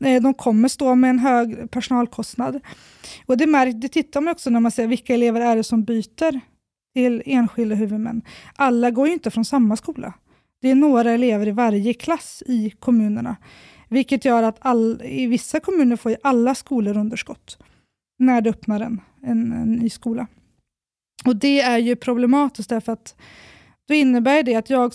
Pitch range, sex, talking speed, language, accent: 225-265 Hz, female, 175 wpm, Swedish, native